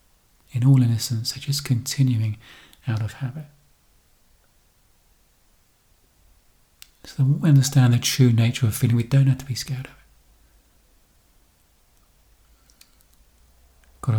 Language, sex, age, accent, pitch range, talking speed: English, male, 40-59, British, 105-135 Hz, 110 wpm